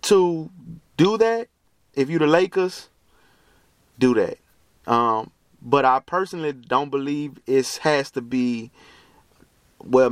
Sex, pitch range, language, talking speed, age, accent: male, 120-180 Hz, English, 120 wpm, 30-49, American